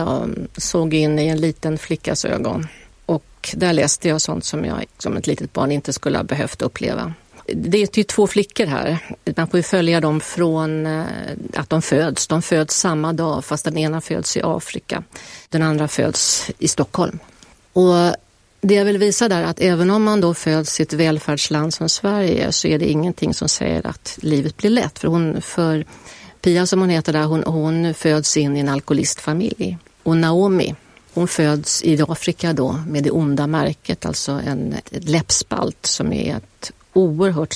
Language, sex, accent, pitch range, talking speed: Swedish, female, native, 155-180 Hz, 185 wpm